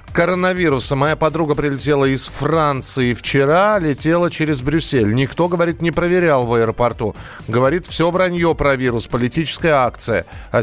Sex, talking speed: male, 135 wpm